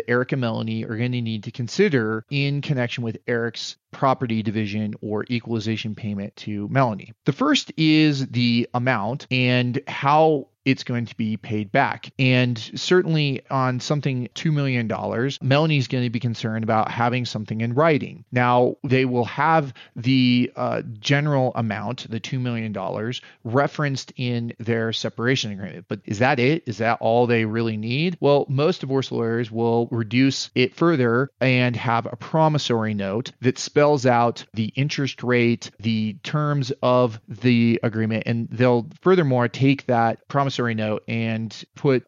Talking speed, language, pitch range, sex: 155 wpm, English, 115-135 Hz, male